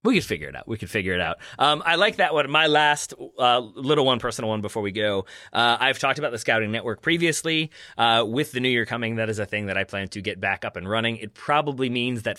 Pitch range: 100-125 Hz